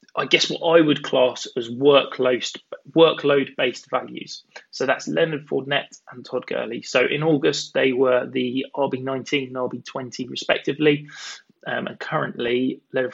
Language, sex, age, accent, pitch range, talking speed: English, male, 20-39, British, 125-150 Hz, 135 wpm